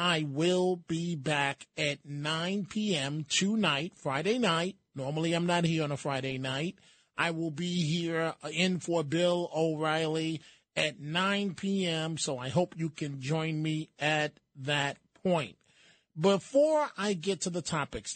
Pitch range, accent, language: 155-190 Hz, American, English